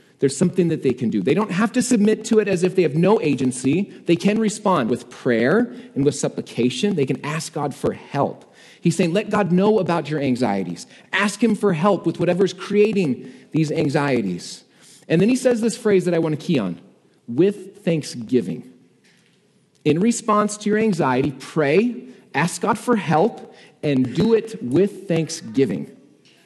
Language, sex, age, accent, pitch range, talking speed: English, male, 40-59, American, 155-205 Hz, 180 wpm